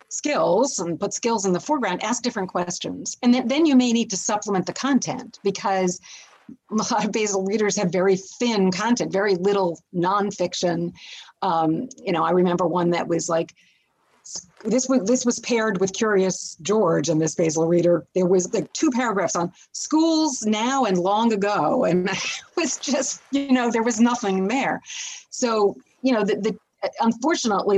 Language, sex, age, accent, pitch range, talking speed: English, female, 40-59, American, 180-230 Hz, 175 wpm